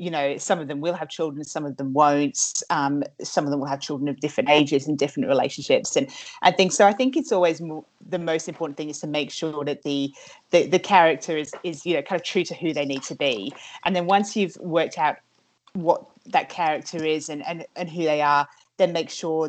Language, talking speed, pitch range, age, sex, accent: English, 245 wpm, 145-175 Hz, 30-49, female, British